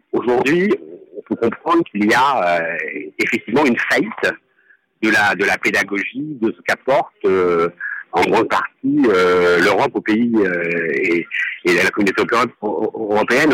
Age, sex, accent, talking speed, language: 50-69, male, French, 145 wpm, French